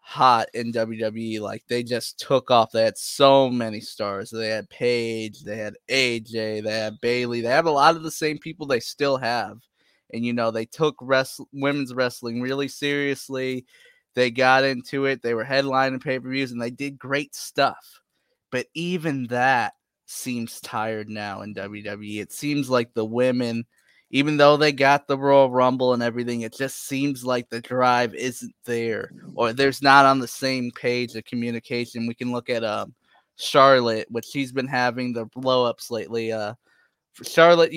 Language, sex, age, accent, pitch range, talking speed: English, male, 20-39, American, 115-135 Hz, 175 wpm